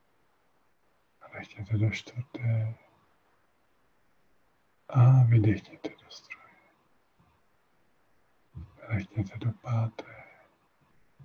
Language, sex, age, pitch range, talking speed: Czech, male, 50-69, 110-125 Hz, 55 wpm